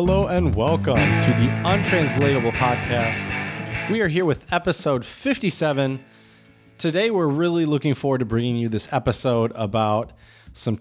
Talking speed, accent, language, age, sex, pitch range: 140 wpm, American, English, 20-39, male, 115-150 Hz